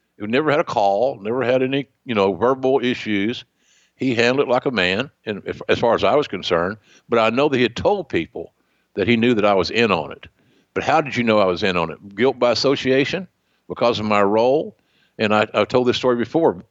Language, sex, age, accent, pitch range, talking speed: English, male, 60-79, American, 105-130 Hz, 240 wpm